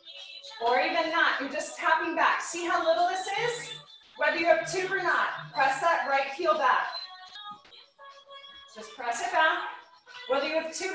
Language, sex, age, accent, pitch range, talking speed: English, female, 20-39, American, 285-375 Hz, 170 wpm